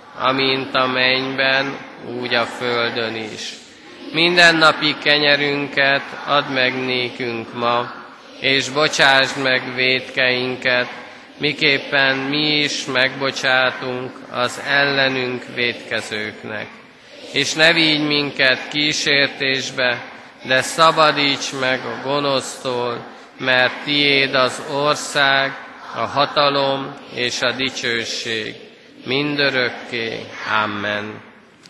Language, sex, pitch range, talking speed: Hungarian, male, 125-150 Hz, 85 wpm